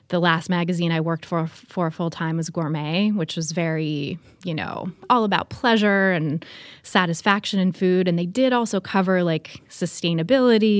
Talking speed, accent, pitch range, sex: 165 wpm, American, 165-190 Hz, female